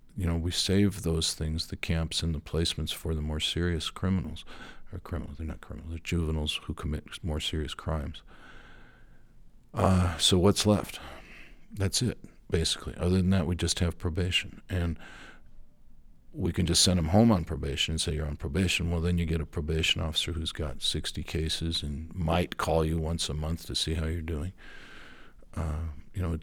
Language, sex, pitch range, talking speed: English, male, 80-95 Hz, 190 wpm